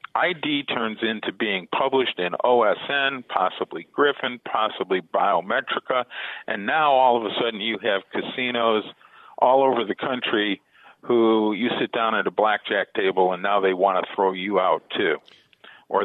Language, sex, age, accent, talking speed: English, male, 50-69, American, 155 wpm